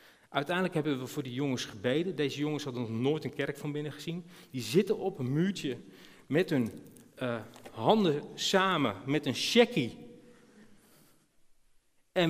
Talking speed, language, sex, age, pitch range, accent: 150 wpm, Dutch, male, 40-59, 125-185 Hz, Dutch